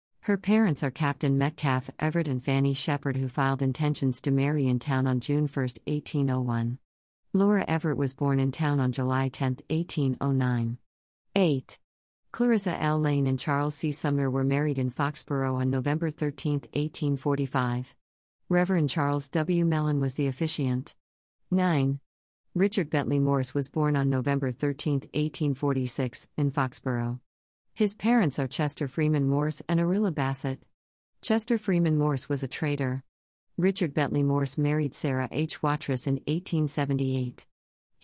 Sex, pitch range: female, 130-155 Hz